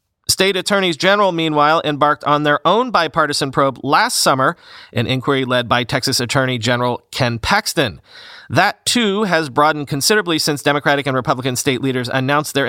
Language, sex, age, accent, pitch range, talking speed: English, male, 30-49, American, 125-165 Hz, 160 wpm